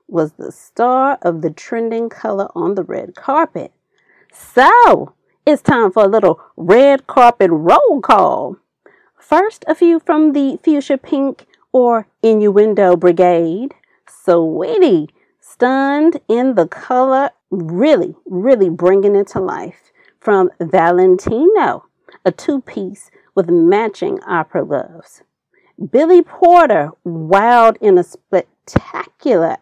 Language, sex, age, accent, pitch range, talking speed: English, female, 40-59, American, 195-310 Hz, 115 wpm